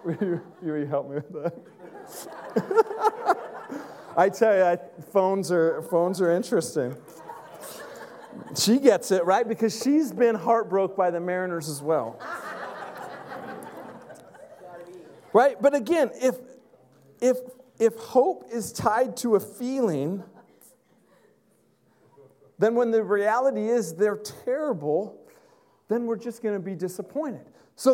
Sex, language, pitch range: male, English, 195-260 Hz